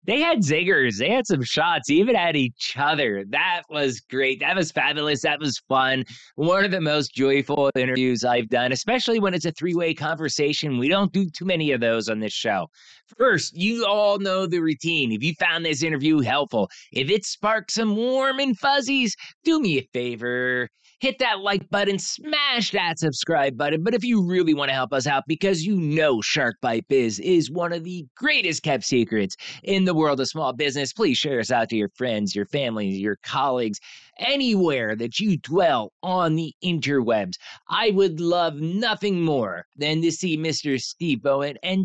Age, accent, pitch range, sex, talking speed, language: 20-39, American, 130-195 Hz, male, 190 wpm, English